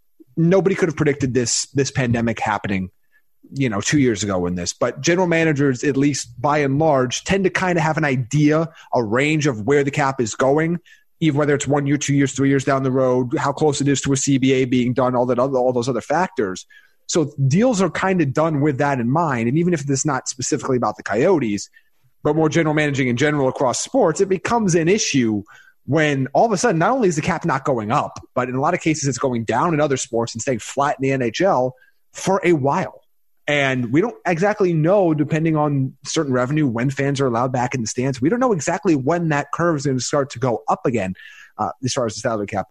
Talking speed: 240 wpm